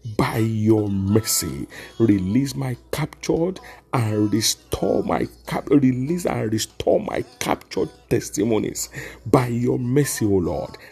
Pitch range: 105-130 Hz